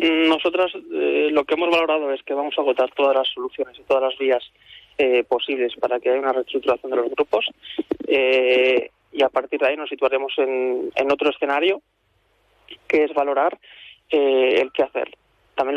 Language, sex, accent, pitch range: Spanish, male, Spanish, 130-145 Hz